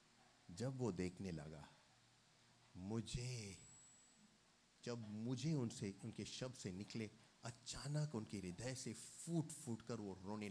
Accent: native